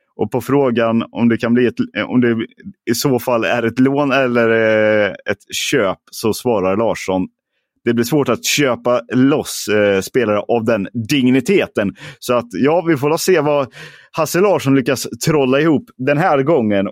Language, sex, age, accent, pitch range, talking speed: Swedish, male, 30-49, native, 95-125 Hz, 170 wpm